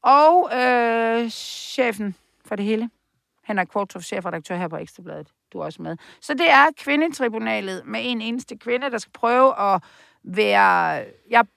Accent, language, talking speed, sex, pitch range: native, Danish, 160 wpm, female, 180-240 Hz